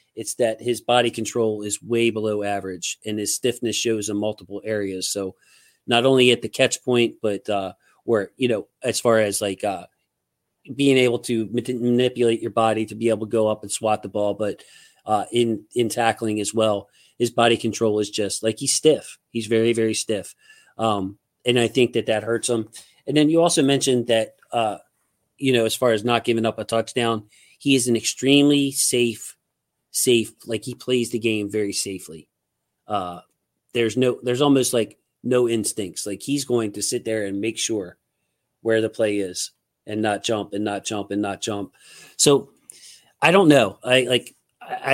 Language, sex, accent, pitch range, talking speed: English, male, American, 105-120 Hz, 190 wpm